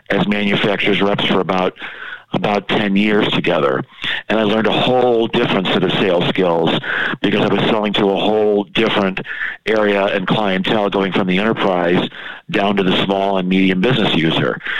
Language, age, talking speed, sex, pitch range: English, 50-69, 170 wpm, male, 95-105 Hz